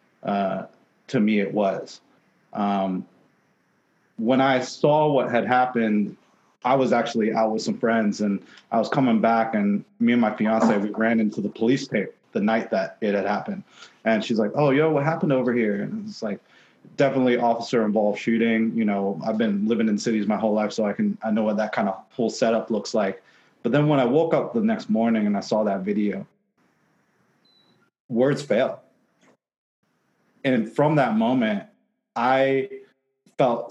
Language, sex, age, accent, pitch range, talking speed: English, male, 30-49, American, 110-160 Hz, 180 wpm